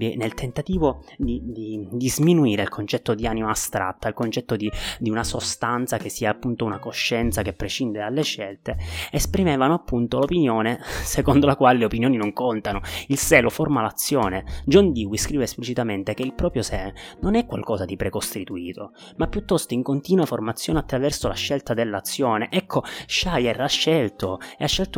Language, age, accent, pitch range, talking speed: Italian, 20-39, native, 100-135 Hz, 160 wpm